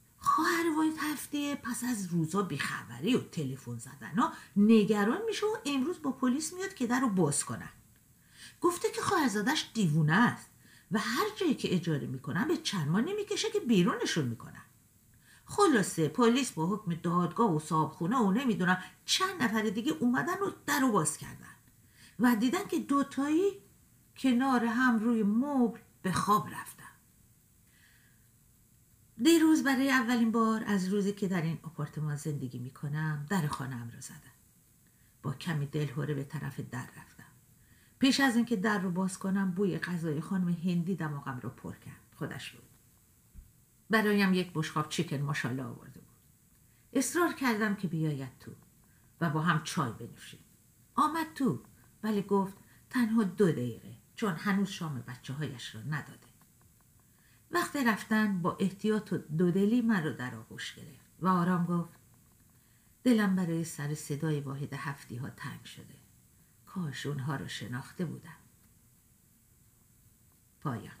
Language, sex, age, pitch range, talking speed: Persian, female, 50-69, 150-240 Hz, 145 wpm